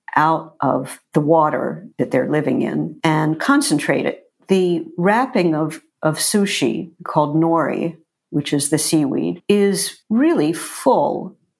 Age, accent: 50-69, American